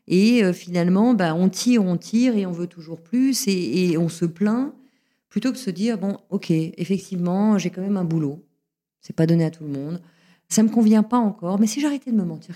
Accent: French